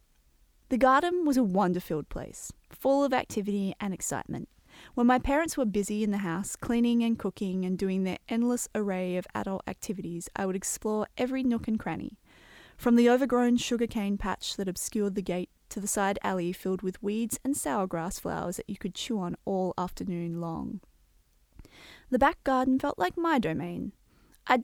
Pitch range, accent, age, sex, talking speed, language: 185-245 Hz, Australian, 20-39, female, 175 wpm, English